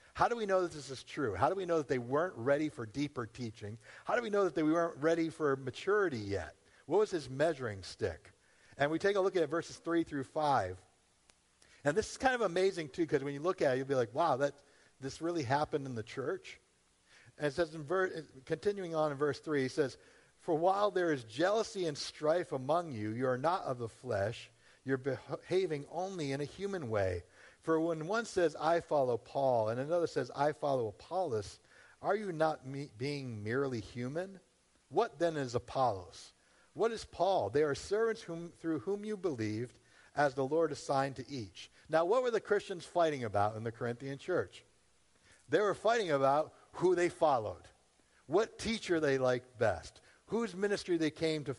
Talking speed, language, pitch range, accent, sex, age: 200 wpm, English, 130-170 Hz, American, male, 50-69